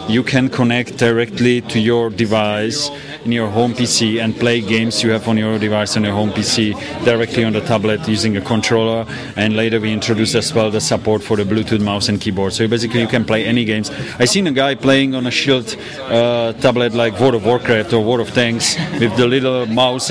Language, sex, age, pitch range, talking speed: English, male, 30-49, 110-125 Hz, 220 wpm